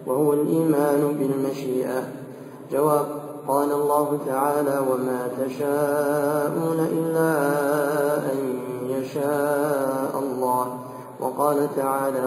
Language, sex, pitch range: Arabic, male, 130-145 Hz